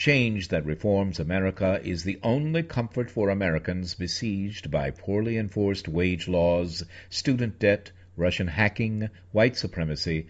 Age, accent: 60-79, American